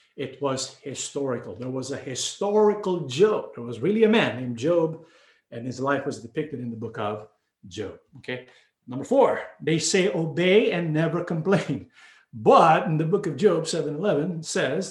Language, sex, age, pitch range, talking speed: English, male, 50-69, 145-200 Hz, 170 wpm